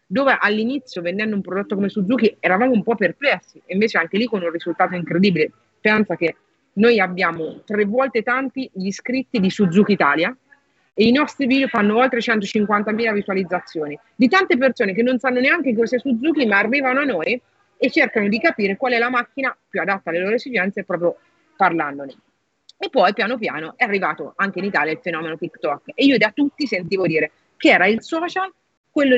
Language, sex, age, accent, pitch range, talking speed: Italian, female, 30-49, native, 185-250 Hz, 185 wpm